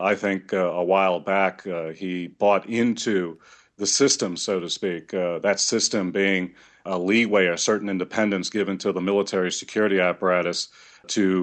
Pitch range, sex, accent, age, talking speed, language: 95-105 Hz, male, American, 40-59, 165 wpm, English